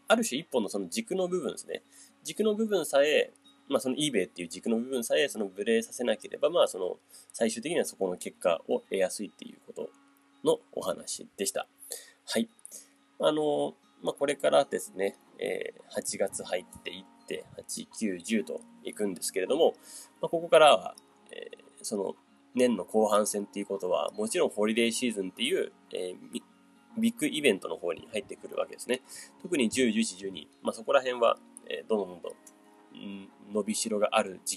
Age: 20-39